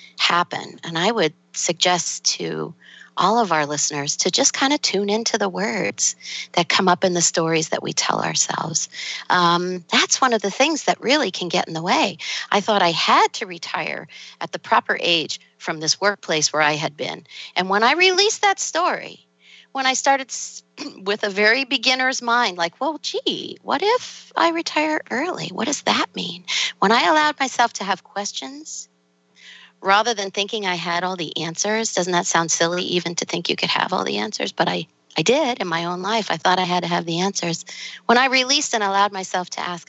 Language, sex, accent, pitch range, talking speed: English, female, American, 170-240 Hz, 205 wpm